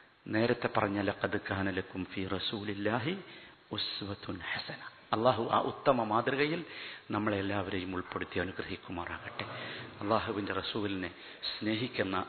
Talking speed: 80 wpm